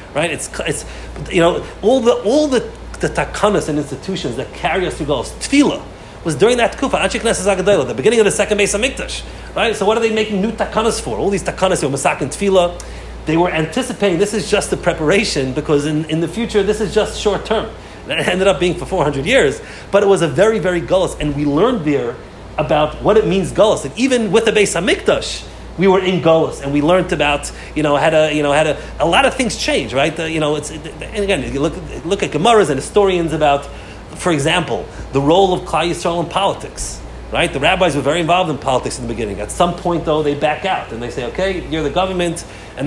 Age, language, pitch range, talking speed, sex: 30-49, English, 150-205 Hz, 230 wpm, male